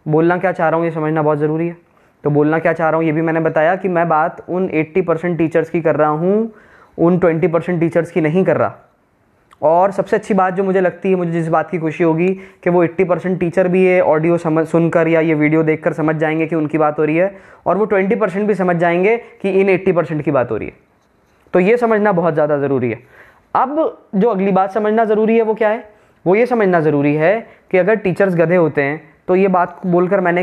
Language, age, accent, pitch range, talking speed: Hindi, 20-39, native, 160-195 Hz, 240 wpm